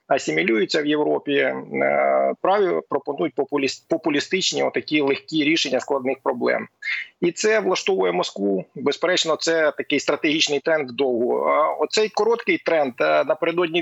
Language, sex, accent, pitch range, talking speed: Ukrainian, male, native, 140-170 Hz, 110 wpm